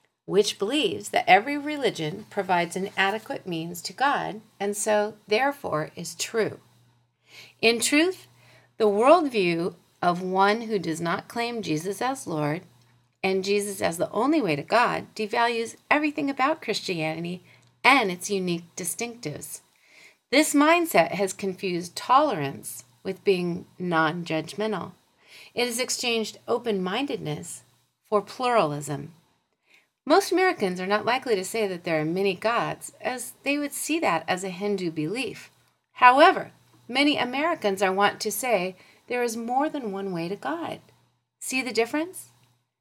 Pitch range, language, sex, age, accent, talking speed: 175-245 Hz, English, female, 40-59, American, 135 wpm